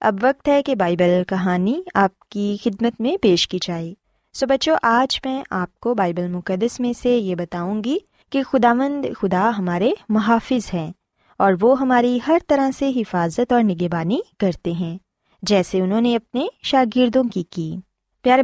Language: Urdu